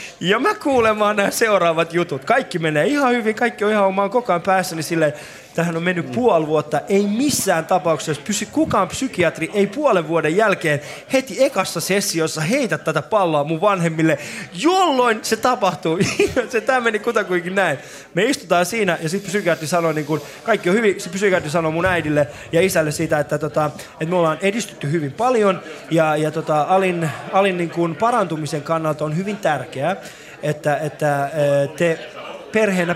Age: 20-39